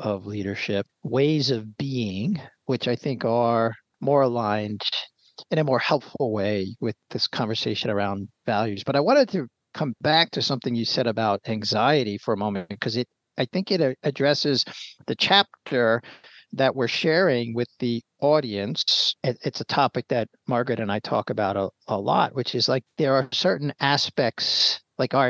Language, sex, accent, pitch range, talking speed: English, male, American, 110-140 Hz, 170 wpm